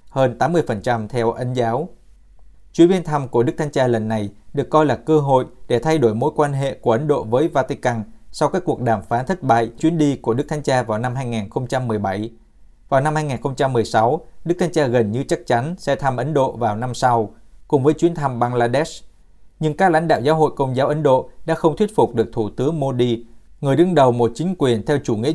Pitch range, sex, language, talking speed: 115-150 Hz, male, Vietnamese, 225 wpm